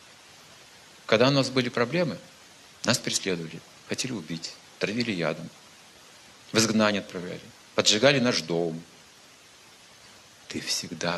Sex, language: male, Russian